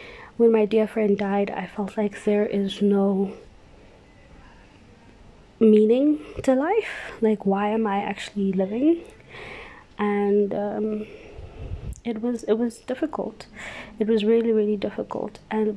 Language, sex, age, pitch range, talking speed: English, female, 20-39, 200-220 Hz, 125 wpm